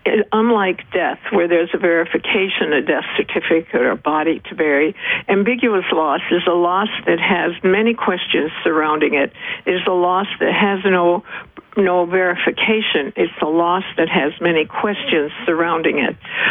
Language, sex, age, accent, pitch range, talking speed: English, female, 60-79, American, 170-215 Hz, 160 wpm